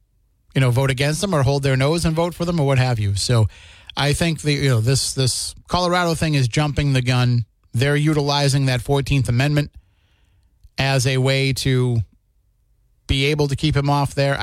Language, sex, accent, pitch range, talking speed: English, male, American, 110-140 Hz, 195 wpm